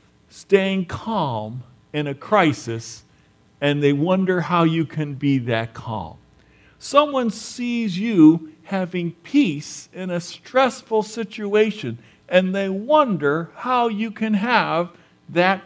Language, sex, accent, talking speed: English, male, American, 120 wpm